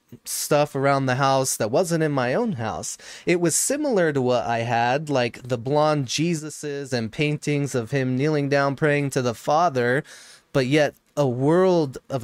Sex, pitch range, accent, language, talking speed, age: male, 125-155 Hz, American, English, 175 wpm, 20-39